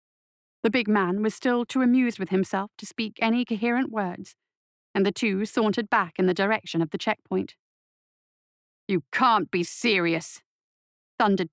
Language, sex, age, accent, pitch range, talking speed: English, female, 40-59, British, 205-260 Hz, 155 wpm